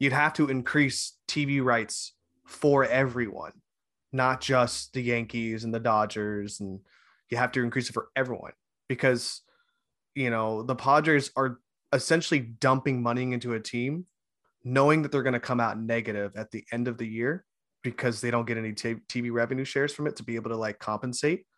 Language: English